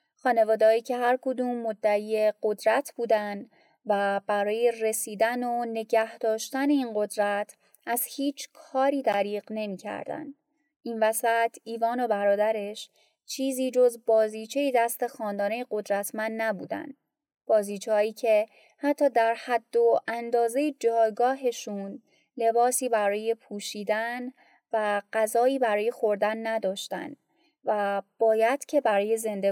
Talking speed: 110 wpm